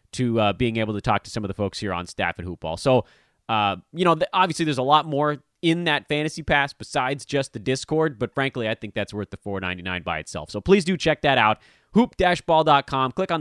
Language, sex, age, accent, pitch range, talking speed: English, male, 30-49, American, 115-180 Hz, 240 wpm